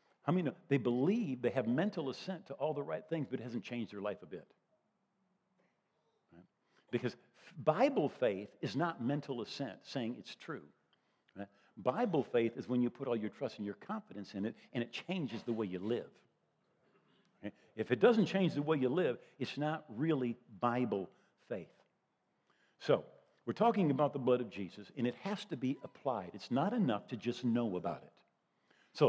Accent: American